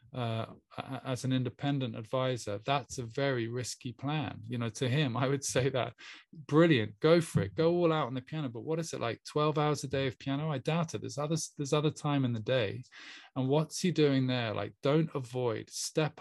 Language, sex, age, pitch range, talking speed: English, male, 20-39, 120-150 Hz, 220 wpm